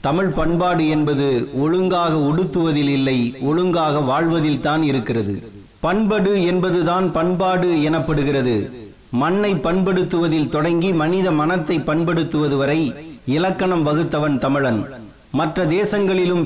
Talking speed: 90 wpm